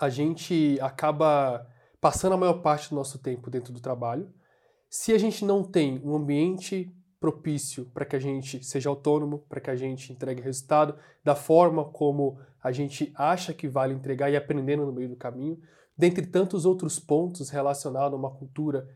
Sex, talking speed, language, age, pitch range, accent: male, 175 wpm, Portuguese, 20-39, 135-165 Hz, Brazilian